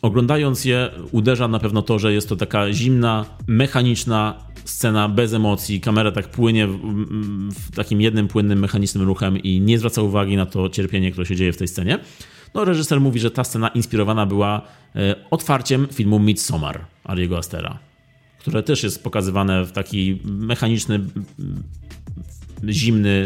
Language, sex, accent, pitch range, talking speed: Polish, male, native, 95-110 Hz, 150 wpm